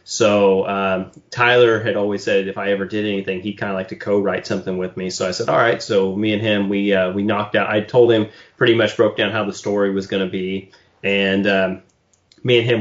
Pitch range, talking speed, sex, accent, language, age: 95-115 Hz, 250 wpm, male, American, English, 30-49